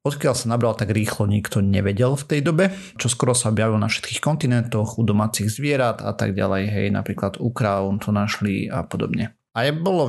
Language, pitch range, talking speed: Slovak, 105-120 Hz, 200 wpm